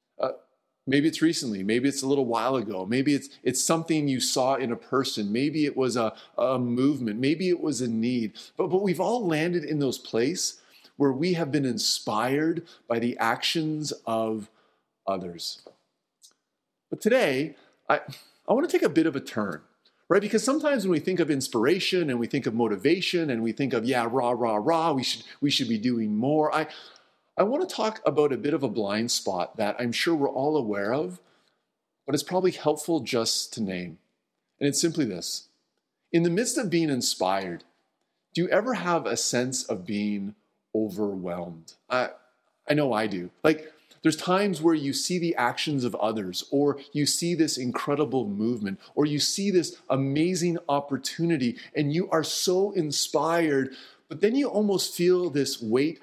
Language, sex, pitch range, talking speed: English, male, 115-170 Hz, 185 wpm